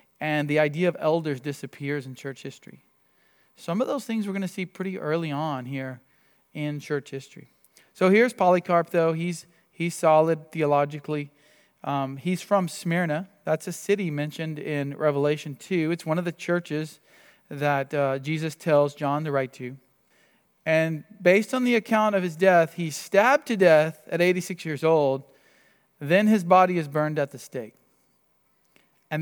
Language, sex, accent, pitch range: English, male, American, 140-175 Hz